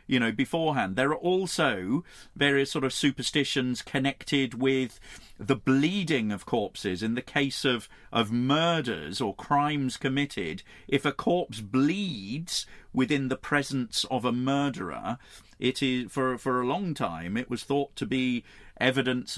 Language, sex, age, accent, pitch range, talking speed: English, male, 40-59, British, 105-145 Hz, 150 wpm